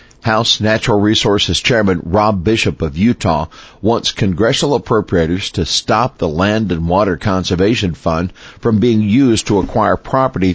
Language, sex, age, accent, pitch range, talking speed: English, male, 50-69, American, 85-110 Hz, 140 wpm